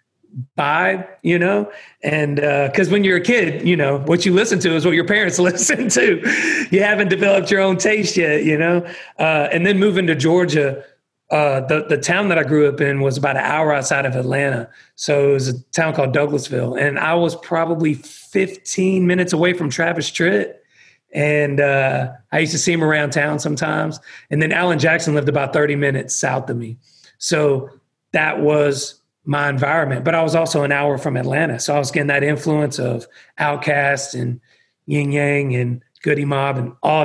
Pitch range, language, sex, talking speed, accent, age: 140-170 Hz, English, male, 195 wpm, American, 40-59